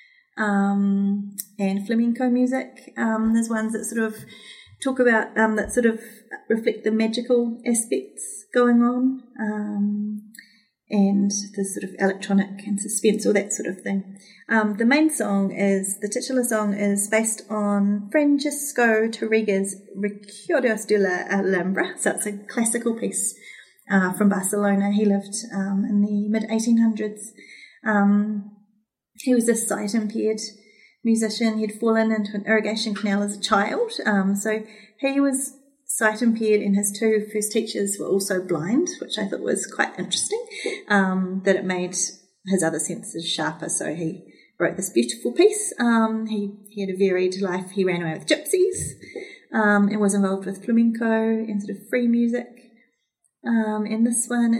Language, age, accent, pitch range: Korean, 30-49, Australian, 200-230 Hz